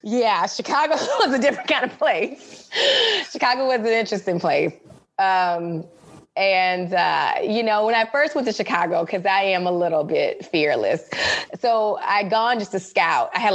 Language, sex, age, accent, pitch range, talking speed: English, female, 20-39, American, 180-225 Hz, 175 wpm